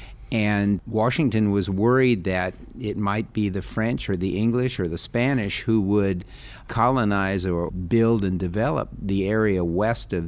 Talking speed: 160 wpm